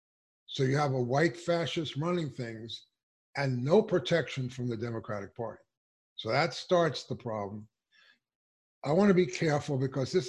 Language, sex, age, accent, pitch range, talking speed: English, male, 50-69, American, 115-150 Hz, 155 wpm